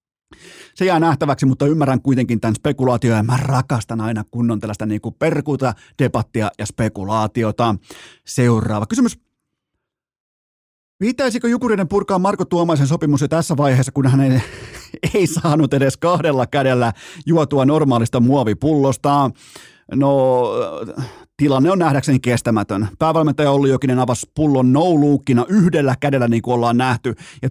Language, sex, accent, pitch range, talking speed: Finnish, male, native, 125-170 Hz, 130 wpm